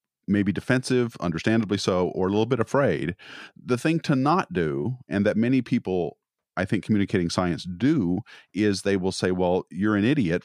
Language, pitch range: English, 90-130 Hz